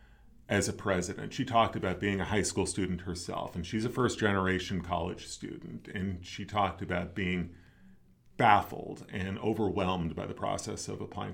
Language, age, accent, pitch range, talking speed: English, 40-59, American, 95-115 Hz, 170 wpm